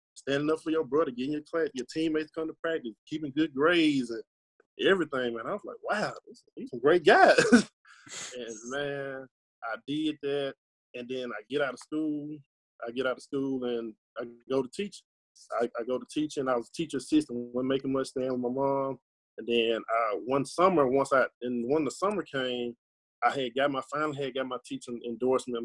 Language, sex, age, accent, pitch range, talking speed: English, male, 20-39, American, 120-150 Hz, 210 wpm